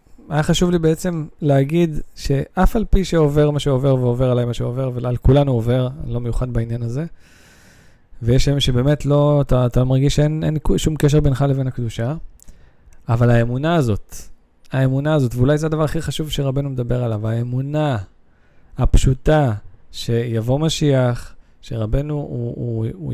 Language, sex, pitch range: Hebrew, male, 120-145 Hz